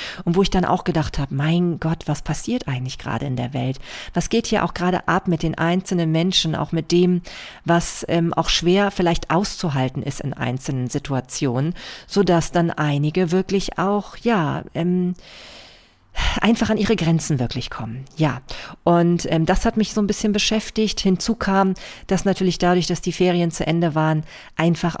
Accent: German